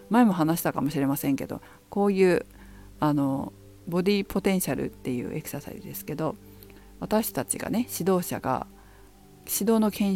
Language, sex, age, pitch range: Japanese, female, 50-69, 135-215 Hz